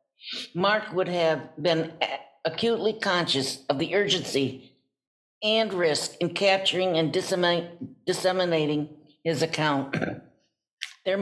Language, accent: English, American